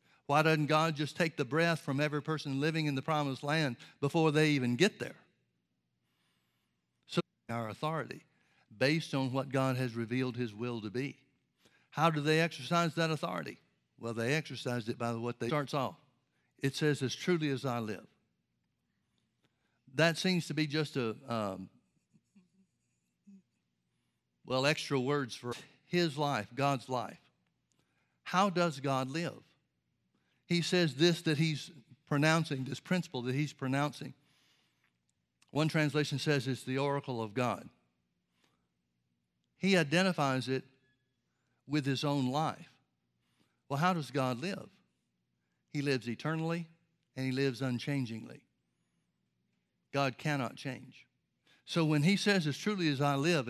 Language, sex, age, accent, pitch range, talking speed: English, male, 60-79, American, 120-155 Hz, 140 wpm